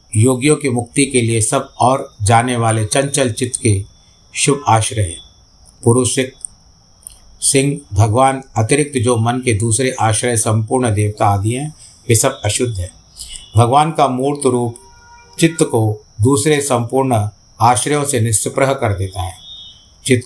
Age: 50-69